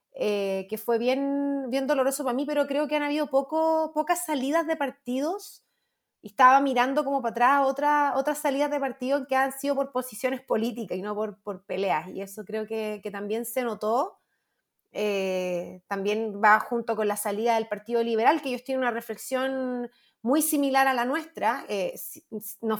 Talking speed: 185 wpm